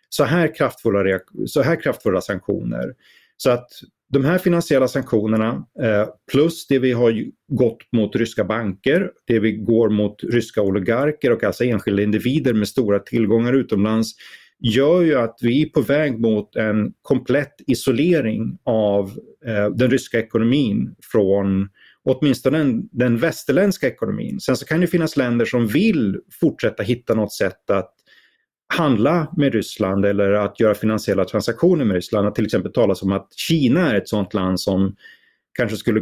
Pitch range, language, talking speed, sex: 105-130 Hz, Swedish, 155 wpm, male